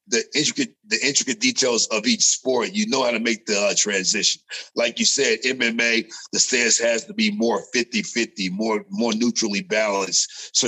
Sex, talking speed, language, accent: male, 180 wpm, English, American